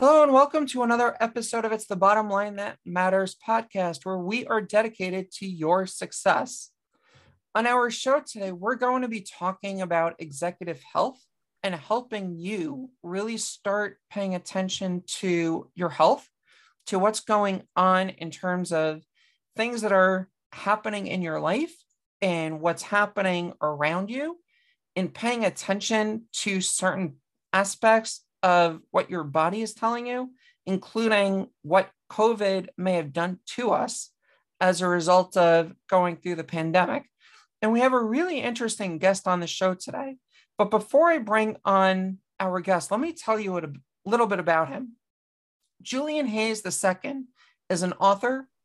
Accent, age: American, 40-59